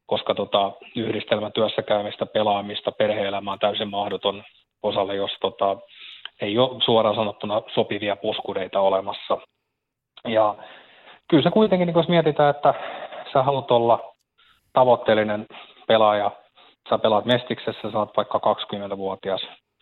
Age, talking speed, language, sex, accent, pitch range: 30-49, 105 wpm, Finnish, male, native, 105-120 Hz